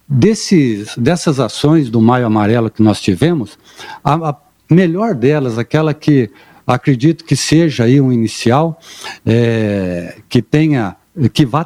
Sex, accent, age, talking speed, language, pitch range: male, Brazilian, 60-79, 130 wpm, Portuguese, 120-160 Hz